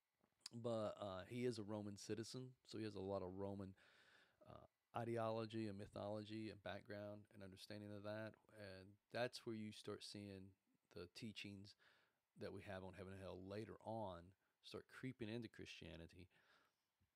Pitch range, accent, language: 100-120 Hz, American, English